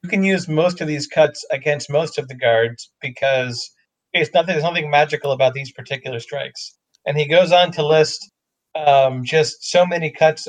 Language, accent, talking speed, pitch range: English, American, 190 wpm, 130-155 Hz